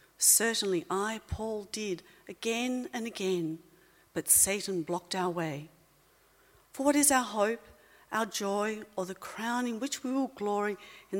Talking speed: 150 wpm